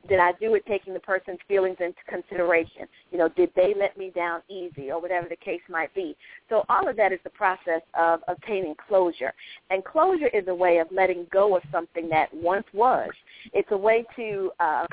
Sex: female